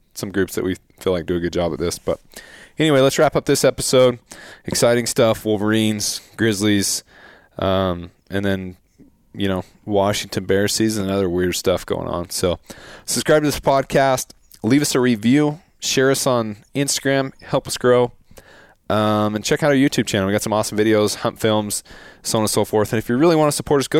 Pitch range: 95-120 Hz